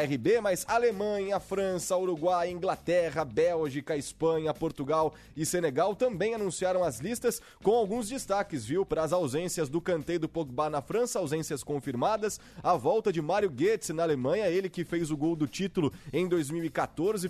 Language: Portuguese